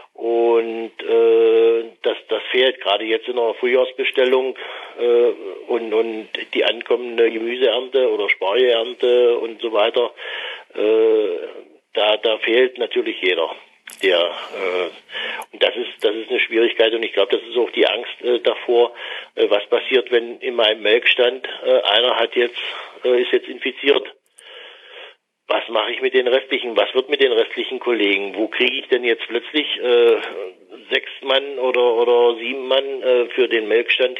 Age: 60-79